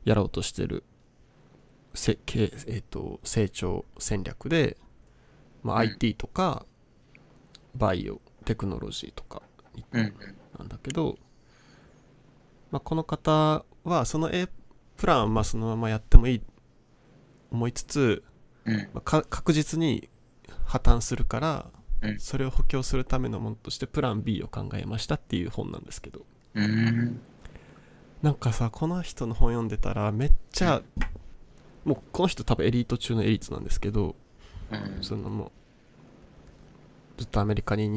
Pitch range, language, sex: 105-135 Hz, Japanese, male